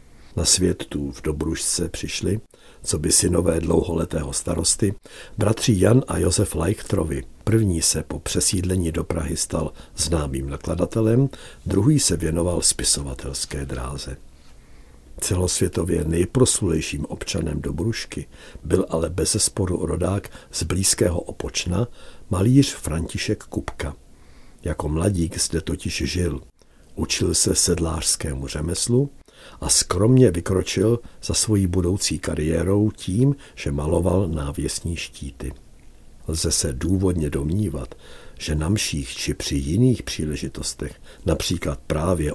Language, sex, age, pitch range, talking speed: Czech, male, 60-79, 75-100 Hz, 110 wpm